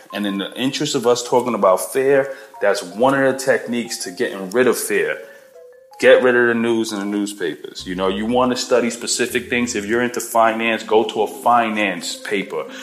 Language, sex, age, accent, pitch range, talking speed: English, male, 30-49, American, 95-120 Hz, 205 wpm